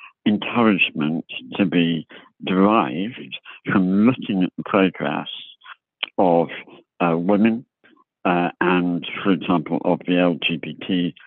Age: 60-79